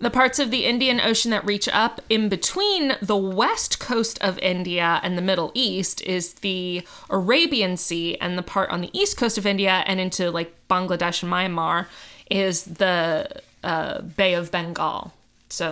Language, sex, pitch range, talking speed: English, female, 180-245 Hz, 175 wpm